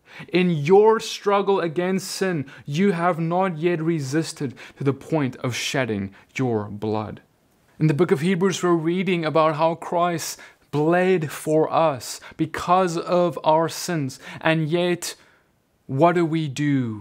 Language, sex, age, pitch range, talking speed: English, male, 20-39, 125-160 Hz, 140 wpm